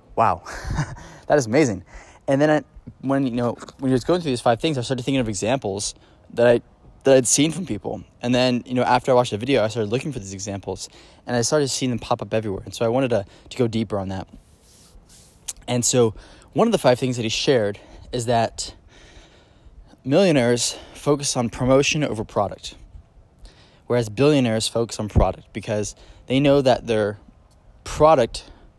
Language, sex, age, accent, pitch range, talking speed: English, male, 10-29, American, 105-125 Hz, 190 wpm